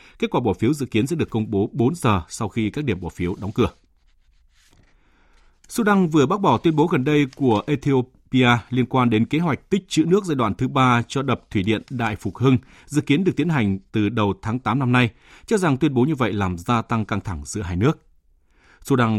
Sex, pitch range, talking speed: male, 105-140 Hz, 235 wpm